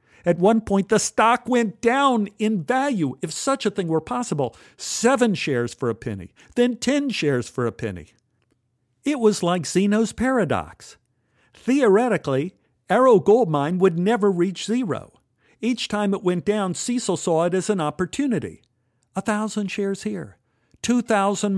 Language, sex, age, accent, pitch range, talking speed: English, male, 50-69, American, 125-190 Hz, 155 wpm